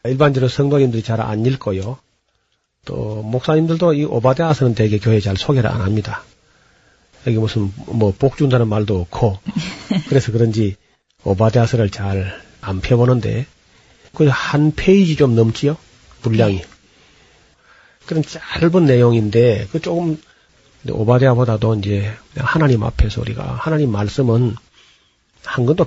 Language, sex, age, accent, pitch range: Korean, male, 40-59, native, 105-130 Hz